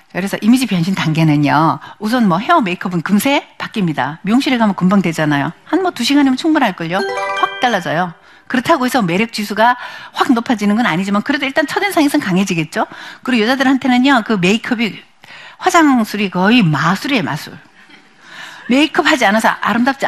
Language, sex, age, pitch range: Korean, female, 60-79, 175-265 Hz